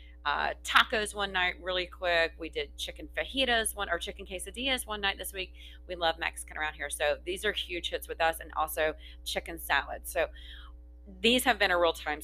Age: 30-49